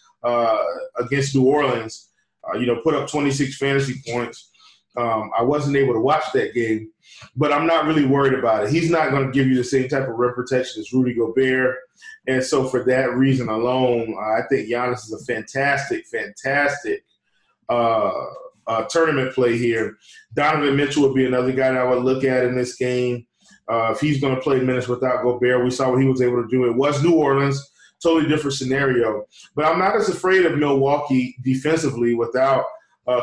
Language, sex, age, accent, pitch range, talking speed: English, male, 20-39, American, 125-145 Hz, 190 wpm